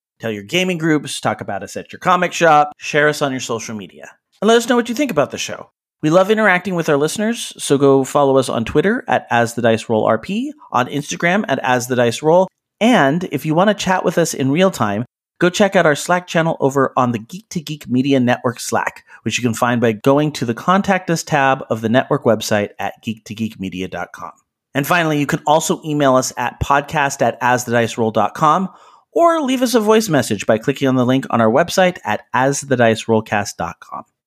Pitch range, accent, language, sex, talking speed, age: 115-165 Hz, American, English, male, 200 wpm, 30-49